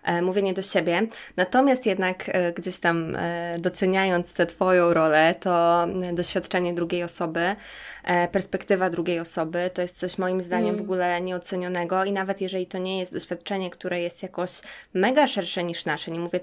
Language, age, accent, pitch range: Polish, 20-39, native, 175-200 Hz